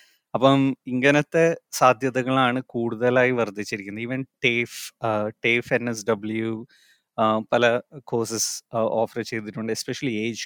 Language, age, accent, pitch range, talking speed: Malayalam, 20-39, native, 110-125 Hz, 100 wpm